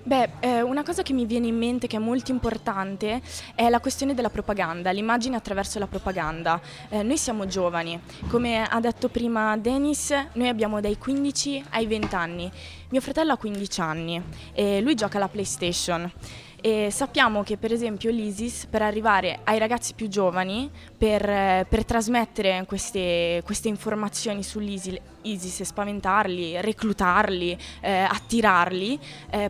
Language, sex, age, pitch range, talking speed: Italian, female, 20-39, 195-240 Hz, 150 wpm